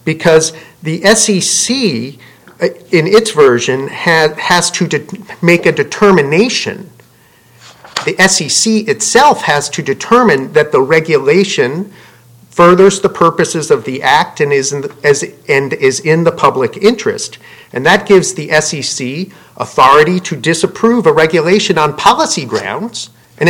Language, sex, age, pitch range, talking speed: English, male, 50-69, 155-210 Hz, 120 wpm